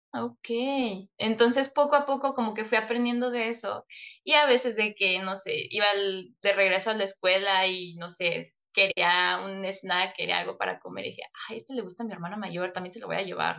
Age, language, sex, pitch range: 20-39, Spanish, female, 190-235 Hz